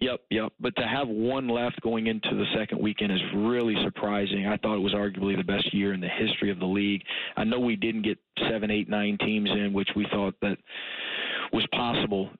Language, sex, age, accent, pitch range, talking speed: English, male, 40-59, American, 100-105 Hz, 220 wpm